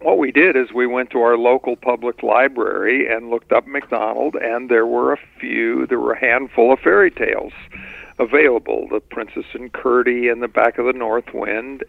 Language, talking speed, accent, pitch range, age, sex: English, 195 wpm, American, 115-135 Hz, 50-69, male